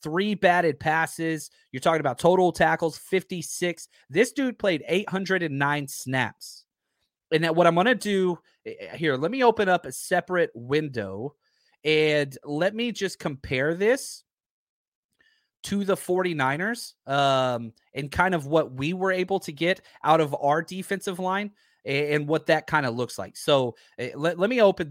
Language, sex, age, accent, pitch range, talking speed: English, male, 30-49, American, 145-190 Hz, 160 wpm